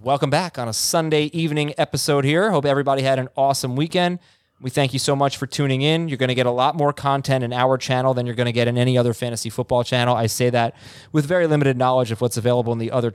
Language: English